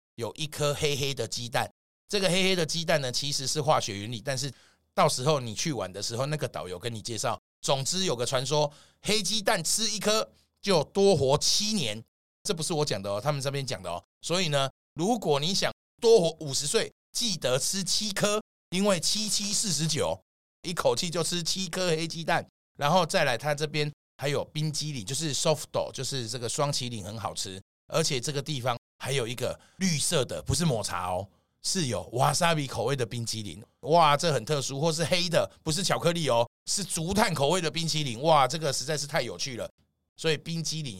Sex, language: male, Chinese